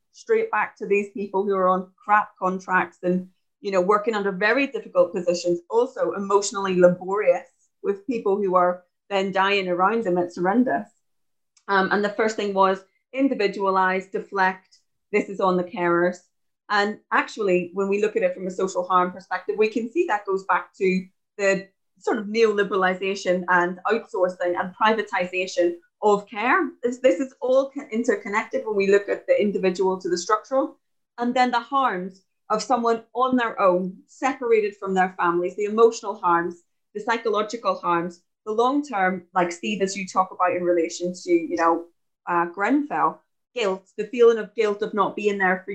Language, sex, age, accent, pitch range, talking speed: English, female, 30-49, British, 180-220 Hz, 170 wpm